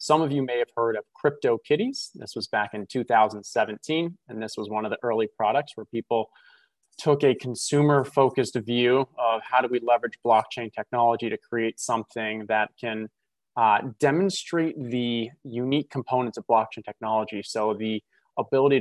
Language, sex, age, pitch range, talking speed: English, male, 20-39, 115-140 Hz, 160 wpm